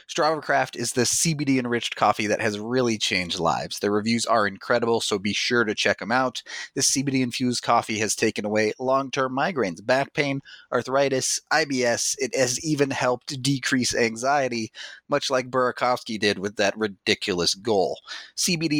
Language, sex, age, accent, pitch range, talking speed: English, male, 30-49, American, 110-135 Hz, 165 wpm